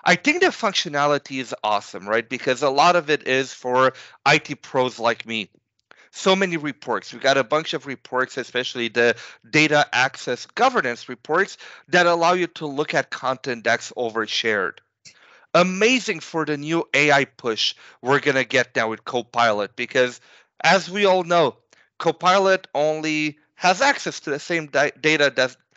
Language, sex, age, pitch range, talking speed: English, male, 40-59, 130-185 Hz, 160 wpm